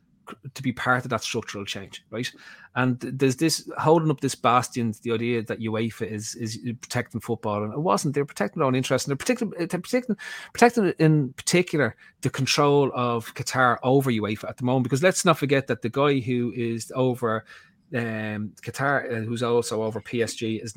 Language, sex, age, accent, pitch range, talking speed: English, male, 30-49, Irish, 115-145 Hz, 195 wpm